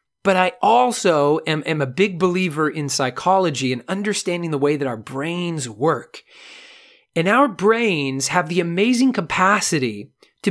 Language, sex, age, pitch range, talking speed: English, male, 40-59, 145-190 Hz, 150 wpm